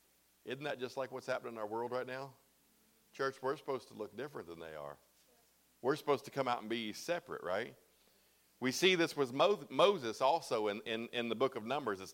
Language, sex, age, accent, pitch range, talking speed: English, male, 40-59, American, 115-150 Hz, 215 wpm